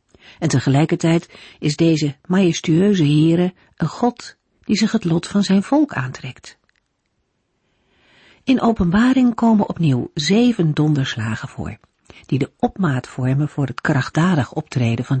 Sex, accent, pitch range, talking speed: female, Dutch, 135-205 Hz, 125 wpm